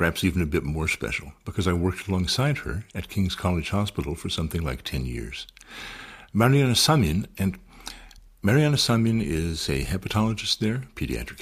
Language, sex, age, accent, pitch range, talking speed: English, male, 60-79, American, 85-115 Hz, 160 wpm